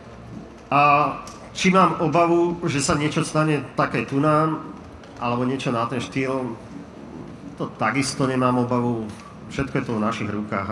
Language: Slovak